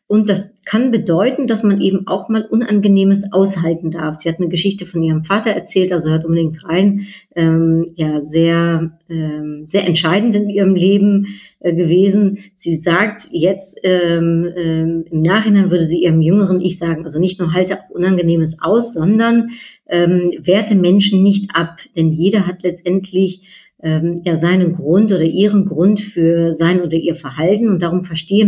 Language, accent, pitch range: German, German, 165-195 Hz